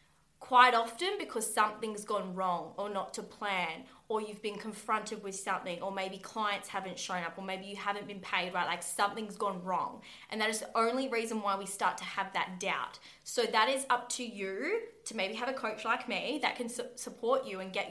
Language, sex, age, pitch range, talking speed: English, female, 20-39, 195-240 Hz, 220 wpm